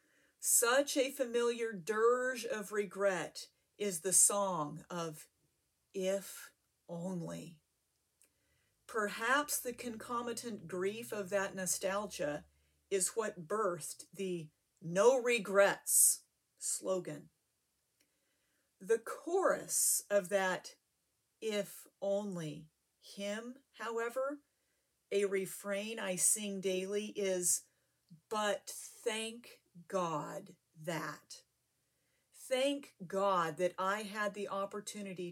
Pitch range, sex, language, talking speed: 185-240 Hz, female, English, 85 wpm